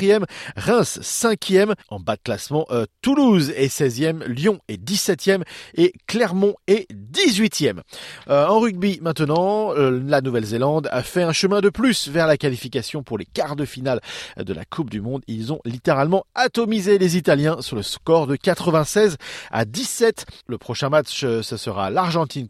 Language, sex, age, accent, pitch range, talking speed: French, male, 40-59, French, 140-200 Hz, 170 wpm